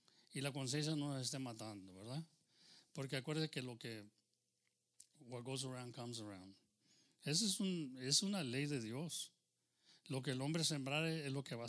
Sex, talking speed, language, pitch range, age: male, 180 wpm, English, 135-170 Hz, 40-59